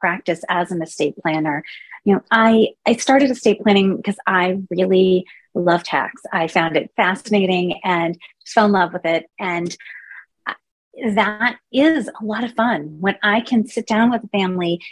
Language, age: English, 30-49